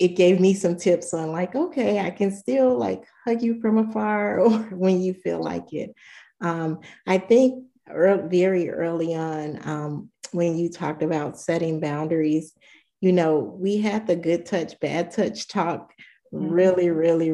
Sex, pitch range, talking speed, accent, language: female, 155-180 Hz, 165 wpm, American, English